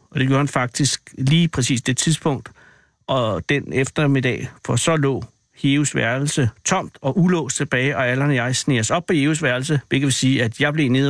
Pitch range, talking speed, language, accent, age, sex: 120-145 Hz, 195 wpm, Danish, native, 60-79, male